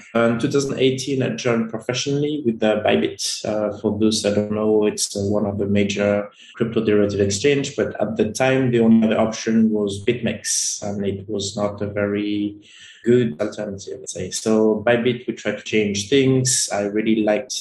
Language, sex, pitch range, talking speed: English, male, 105-120 Hz, 180 wpm